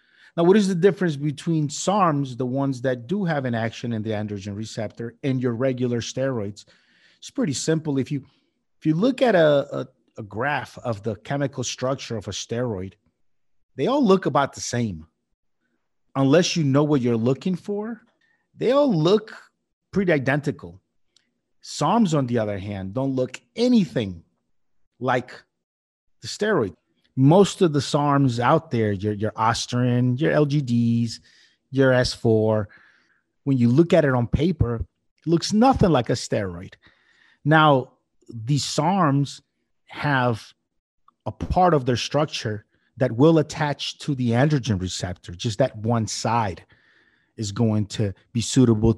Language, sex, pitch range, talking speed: English, male, 115-150 Hz, 150 wpm